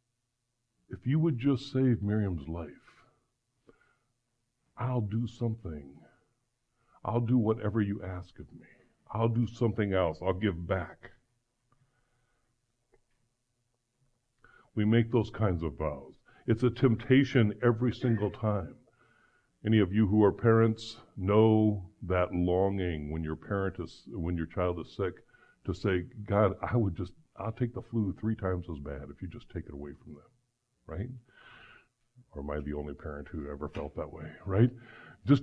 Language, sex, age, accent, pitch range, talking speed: English, female, 60-79, American, 100-125 Hz, 150 wpm